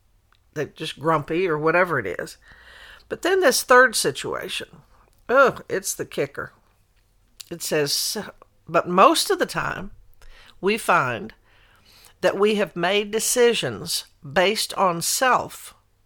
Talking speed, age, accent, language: 125 wpm, 60-79, American, English